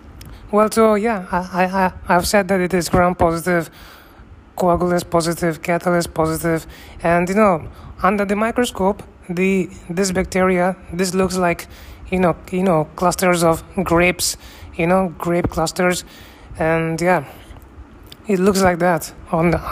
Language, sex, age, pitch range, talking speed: English, male, 20-39, 165-190 Hz, 140 wpm